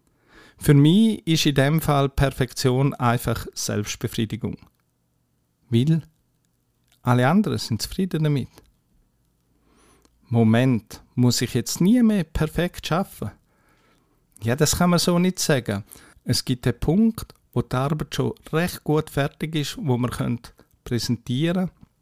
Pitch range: 115-150 Hz